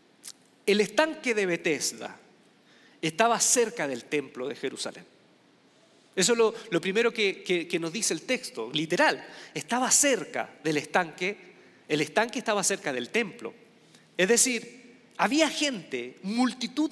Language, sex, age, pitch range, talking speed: Spanish, male, 40-59, 155-235 Hz, 135 wpm